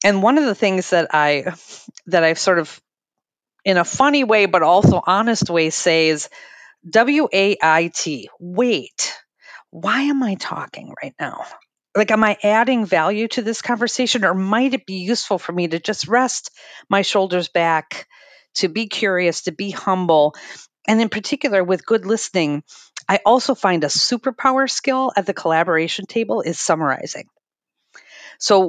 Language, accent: English, American